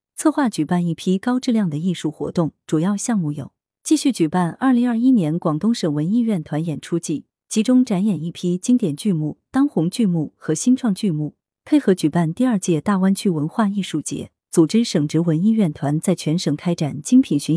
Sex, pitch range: female, 155-215 Hz